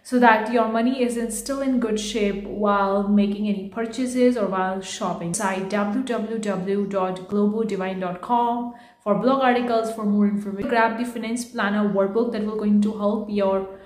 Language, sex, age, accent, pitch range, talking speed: English, female, 30-49, Indian, 205-240 Hz, 150 wpm